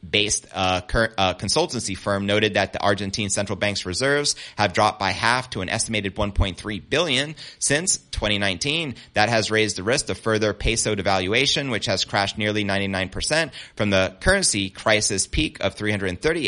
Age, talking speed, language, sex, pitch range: 30-49, 165 wpm, English, male, 95-120 Hz